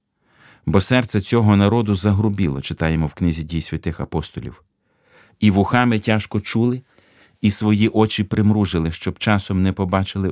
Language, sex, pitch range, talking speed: Ukrainian, male, 95-115 Hz, 135 wpm